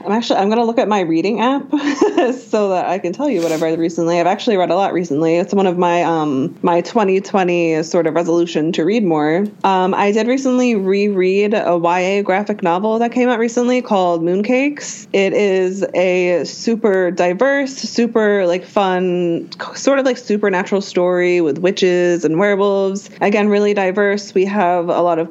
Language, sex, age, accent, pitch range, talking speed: English, female, 20-39, American, 175-220 Hz, 185 wpm